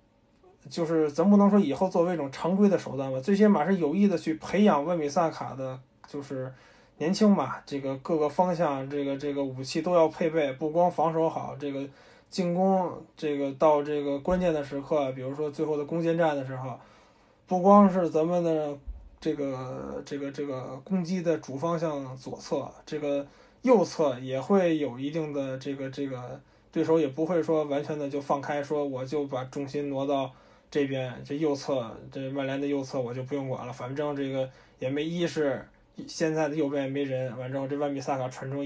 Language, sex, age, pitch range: Chinese, male, 20-39, 130-160 Hz